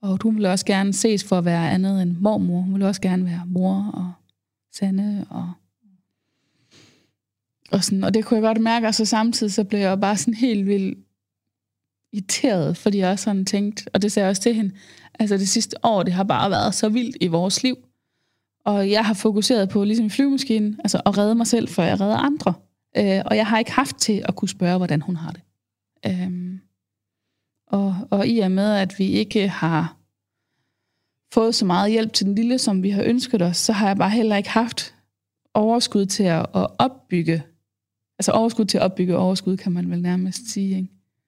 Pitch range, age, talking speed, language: 165-210 Hz, 20-39, 200 wpm, Danish